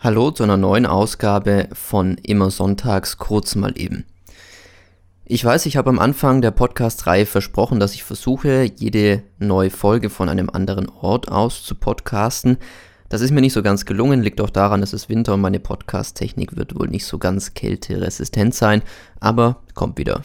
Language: German